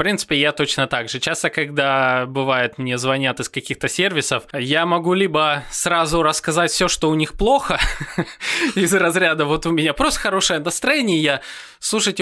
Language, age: Russian, 20-39